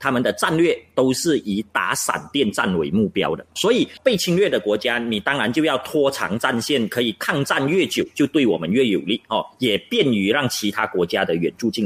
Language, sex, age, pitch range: Chinese, male, 30-49, 130-210 Hz